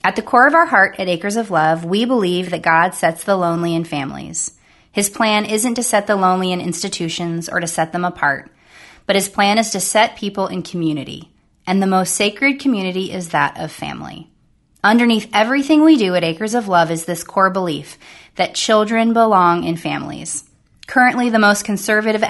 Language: English